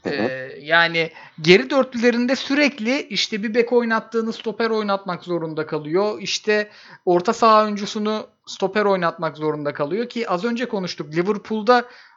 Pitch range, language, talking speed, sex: 165-225 Hz, Turkish, 130 wpm, male